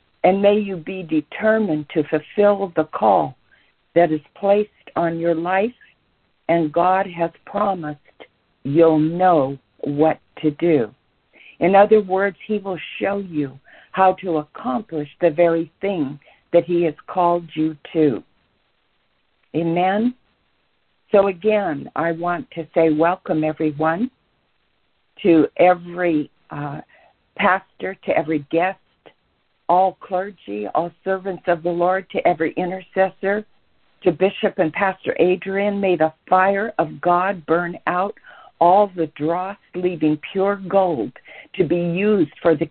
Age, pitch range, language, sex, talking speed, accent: 60-79, 160-195 Hz, English, female, 130 wpm, American